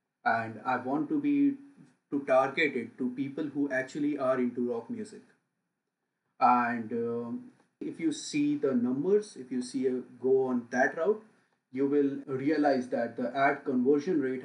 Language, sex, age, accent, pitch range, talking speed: English, male, 30-49, Indian, 125-205 Hz, 160 wpm